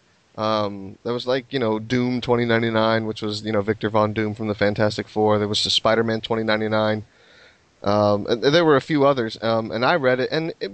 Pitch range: 110-125 Hz